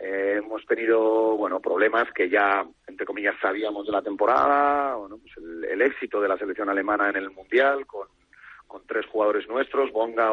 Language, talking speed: English, 180 wpm